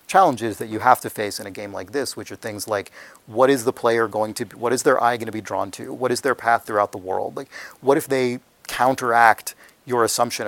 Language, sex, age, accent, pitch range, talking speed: English, male, 30-49, American, 105-120 Hz, 260 wpm